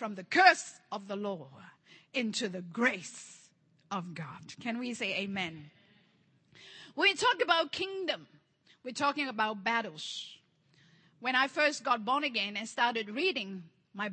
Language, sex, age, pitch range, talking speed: English, female, 50-69, 215-320 Hz, 145 wpm